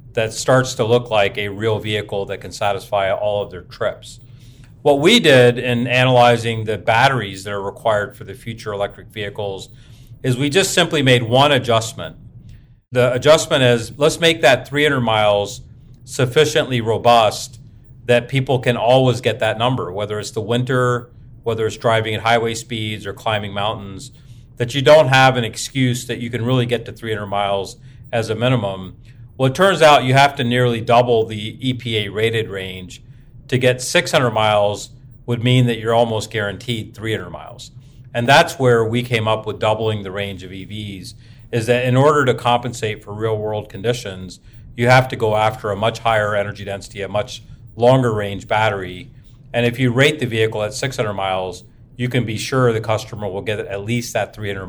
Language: English